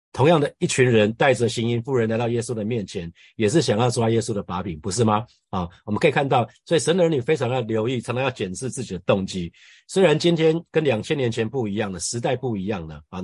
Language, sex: Chinese, male